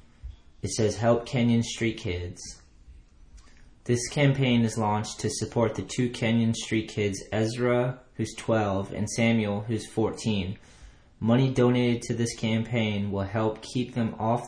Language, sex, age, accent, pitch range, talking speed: English, male, 20-39, American, 100-115 Hz, 140 wpm